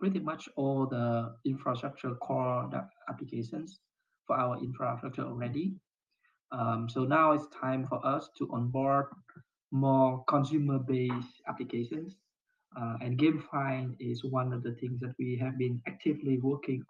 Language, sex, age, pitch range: Russian, male, 20-39, 125-145 Hz